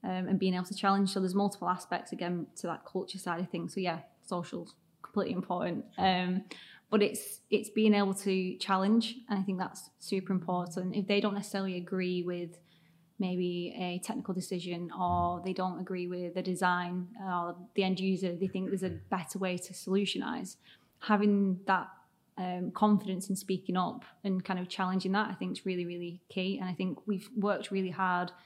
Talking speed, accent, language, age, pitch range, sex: 190 wpm, British, English, 20-39, 175-195 Hz, female